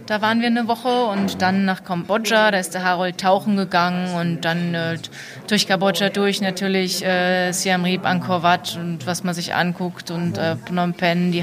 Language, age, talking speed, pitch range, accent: German, 20-39, 190 wpm, 175-195 Hz, German